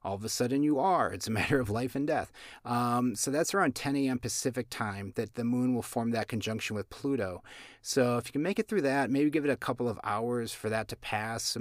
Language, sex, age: English, male, 30-49